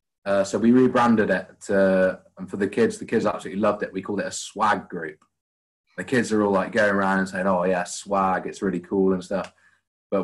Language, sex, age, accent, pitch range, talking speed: English, male, 20-39, British, 90-105 Hz, 230 wpm